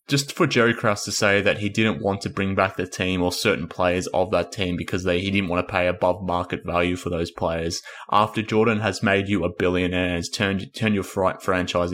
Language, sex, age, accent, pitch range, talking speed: English, male, 20-39, Australian, 90-105 Hz, 235 wpm